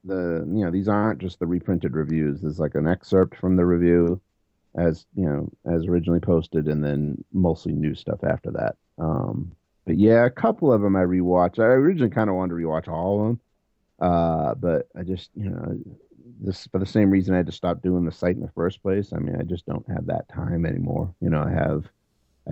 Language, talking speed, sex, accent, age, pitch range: English, 225 wpm, male, American, 30-49, 80-95 Hz